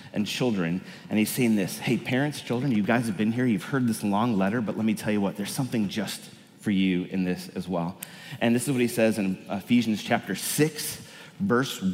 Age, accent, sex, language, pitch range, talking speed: 30-49, American, male, English, 110-155 Hz, 225 wpm